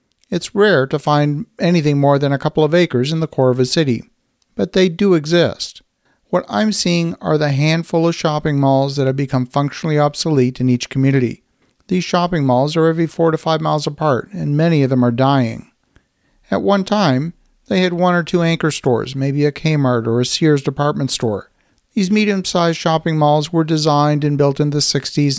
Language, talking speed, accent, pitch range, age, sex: English, 195 wpm, American, 135-165 Hz, 50-69, male